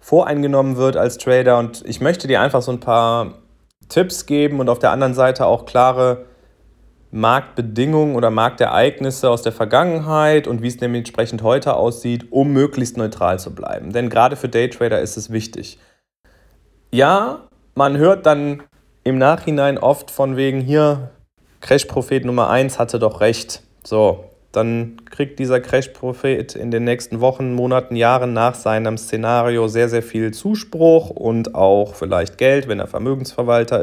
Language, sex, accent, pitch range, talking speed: German, male, German, 110-130 Hz, 155 wpm